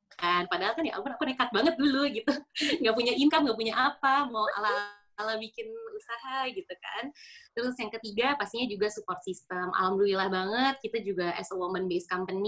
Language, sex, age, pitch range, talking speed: Indonesian, female, 20-39, 185-245 Hz, 175 wpm